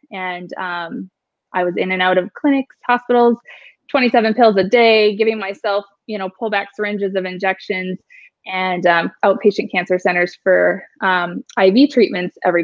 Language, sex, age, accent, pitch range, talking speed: English, female, 20-39, American, 185-220 Hz, 150 wpm